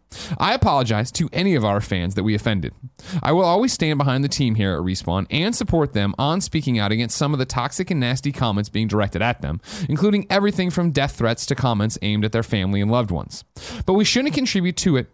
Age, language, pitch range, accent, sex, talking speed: 30-49, English, 110-170 Hz, American, male, 230 wpm